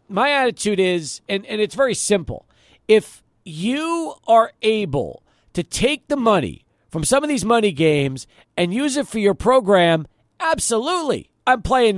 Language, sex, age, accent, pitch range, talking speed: English, male, 50-69, American, 180-250 Hz, 155 wpm